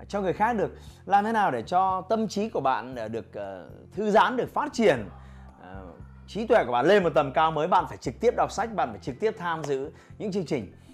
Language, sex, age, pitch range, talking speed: Vietnamese, male, 20-39, 135-210 Hz, 235 wpm